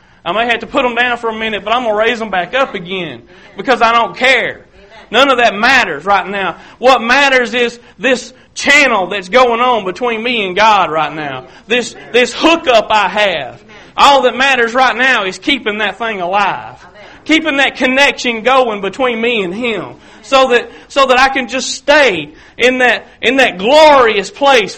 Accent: American